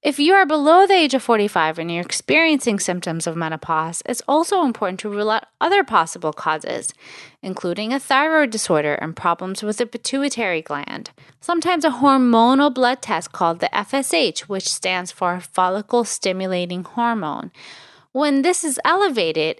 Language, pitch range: English, 175-280 Hz